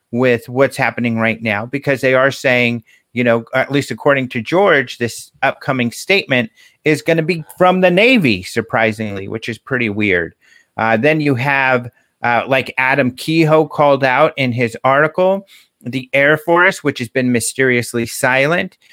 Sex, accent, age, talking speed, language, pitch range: male, American, 40-59, 165 wpm, English, 120-145 Hz